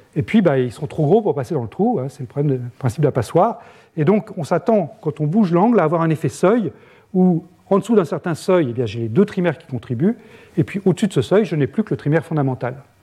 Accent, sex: French, male